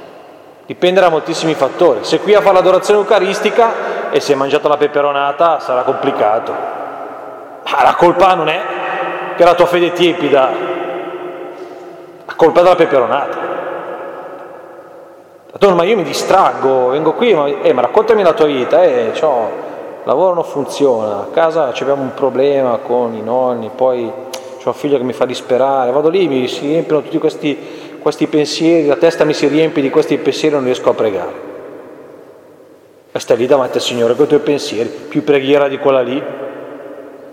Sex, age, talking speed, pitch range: male, 30-49, 170 wpm, 140-185 Hz